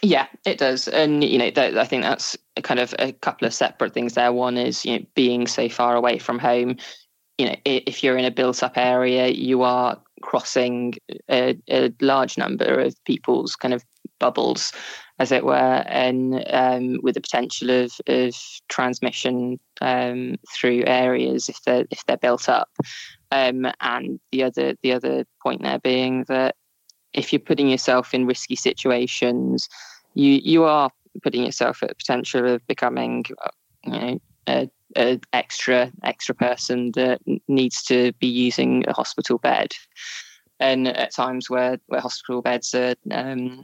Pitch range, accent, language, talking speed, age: 125-130 Hz, British, English, 160 wpm, 20-39